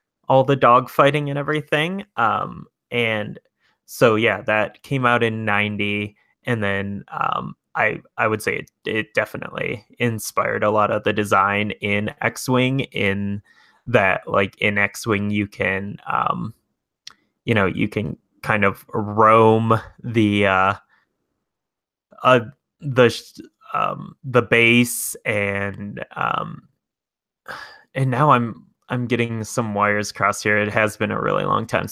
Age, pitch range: 10-29, 105-120 Hz